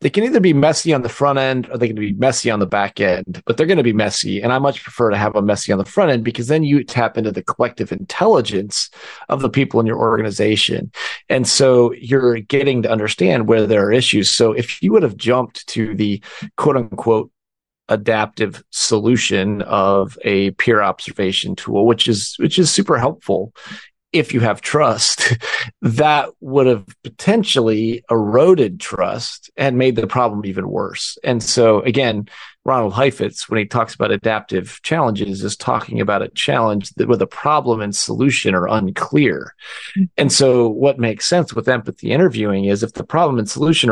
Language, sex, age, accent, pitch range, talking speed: English, male, 30-49, American, 105-130 Hz, 185 wpm